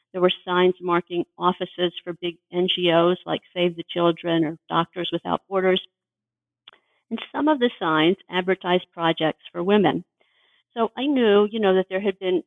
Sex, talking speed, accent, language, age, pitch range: female, 165 wpm, American, English, 50-69, 170-205 Hz